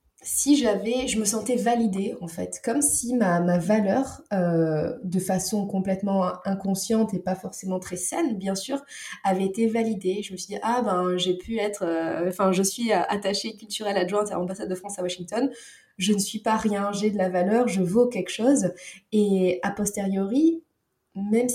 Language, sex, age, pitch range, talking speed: French, female, 20-39, 185-230 Hz, 185 wpm